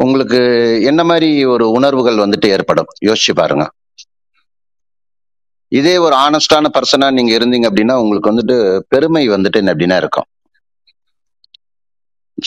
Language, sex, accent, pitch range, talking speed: Tamil, male, native, 110-145 Hz, 105 wpm